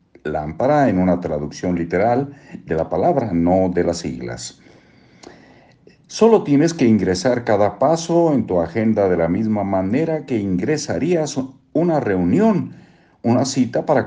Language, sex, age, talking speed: Spanish, male, 50-69, 135 wpm